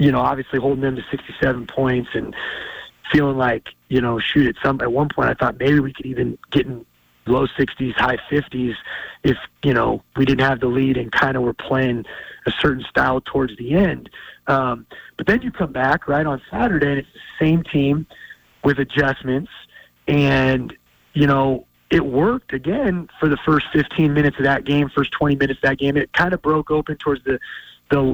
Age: 30-49